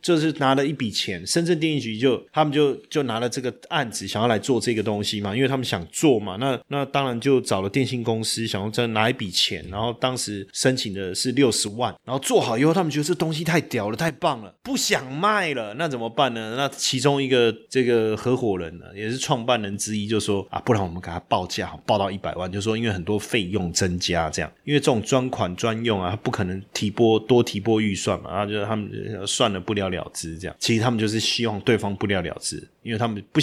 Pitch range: 105-130 Hz